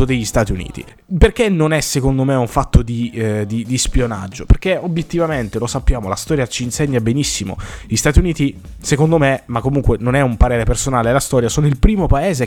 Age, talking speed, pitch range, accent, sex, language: 20-39, 195 wpm, 120-150 Hz, native, male, Italian